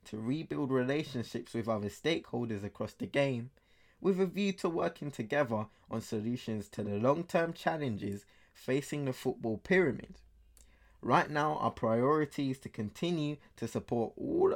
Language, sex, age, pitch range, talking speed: English, male, 20-39, 105-145 Hz, 150 wpm